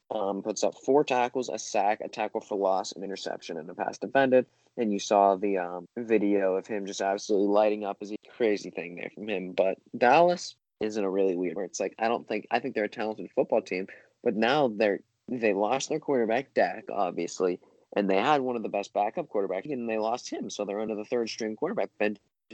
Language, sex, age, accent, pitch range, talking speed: English, male, 20-39, American, 100-125 Hz, 225 wpm